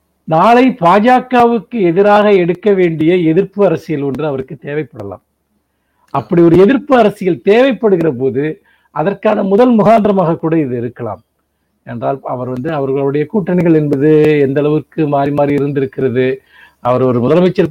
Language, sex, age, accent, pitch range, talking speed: Tamil, male, 50-69, native, 145-200 Hz, 120 wpm